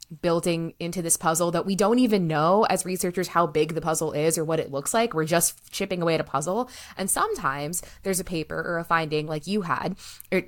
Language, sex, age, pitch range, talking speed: English, female, 20-39, 160-195 Hz, 230 wpm